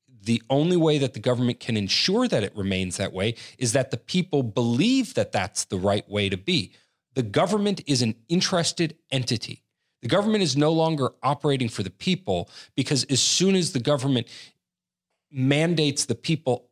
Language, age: English, 40-59